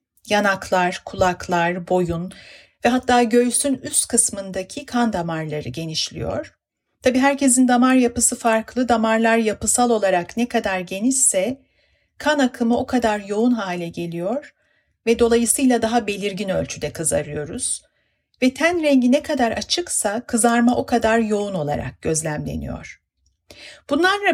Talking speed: 120 wpm